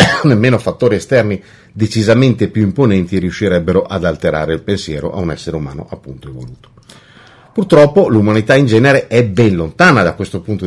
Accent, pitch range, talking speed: native, 95-135 Hz, 150 wpm